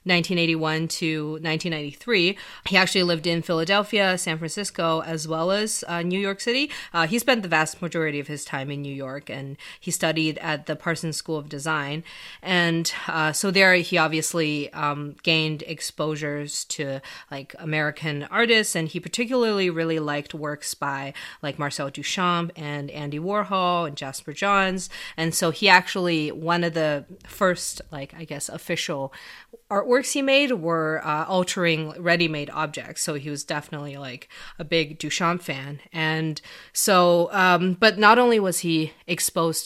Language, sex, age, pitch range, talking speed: English, female, 30-49, 150-180 Hz, 160 wpm